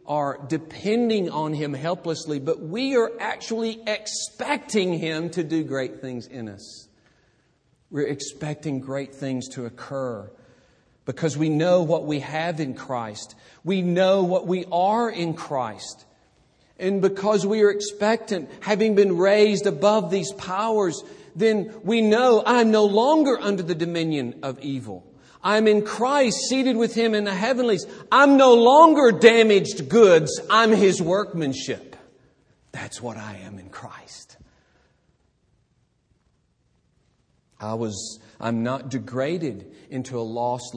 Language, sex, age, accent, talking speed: English, male, 50-69, American, 130 wpm